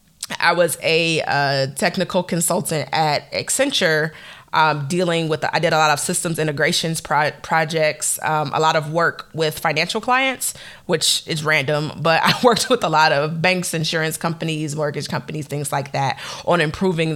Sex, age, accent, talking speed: female, 20-39, American, 170 wpm